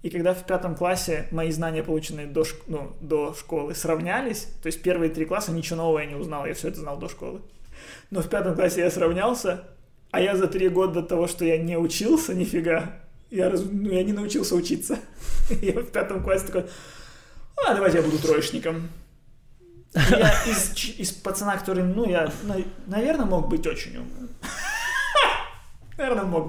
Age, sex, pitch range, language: 20-39, male, 150-185 Hz, Ukrainian